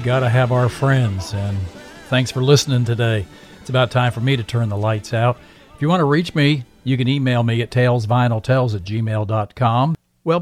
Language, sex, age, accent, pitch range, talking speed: English, male, 50-69, American, 115-150 Hz, 195 wpm